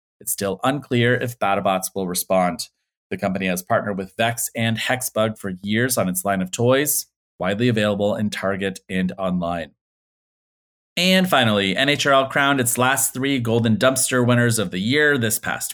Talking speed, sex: 165 wpm, male